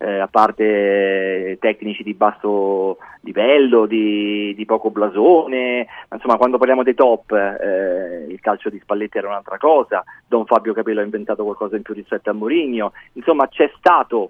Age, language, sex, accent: 40-59, Italian, male, native